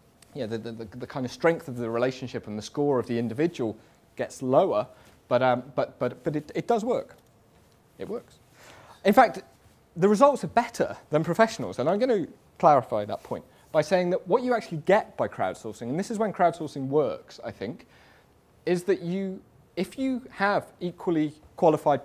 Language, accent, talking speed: English, British, 190 wpm